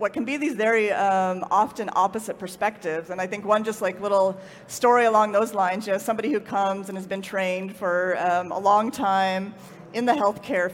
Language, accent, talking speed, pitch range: English, American, 205 wpm, 185-225 Hz